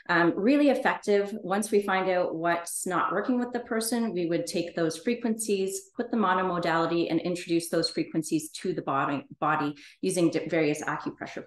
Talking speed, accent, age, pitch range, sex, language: 180 wpm, American, 30-49, 160-200 Hz, female, English